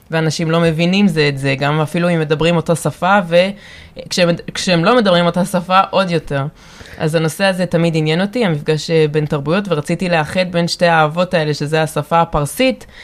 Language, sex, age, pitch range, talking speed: Hebrew, female, 20-39, 155-180 Hz, 175 wpm